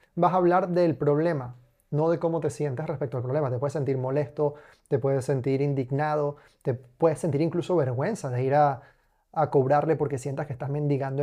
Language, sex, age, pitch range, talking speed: Spanish, male, 20-39, 145-165 Hz, 190 wpm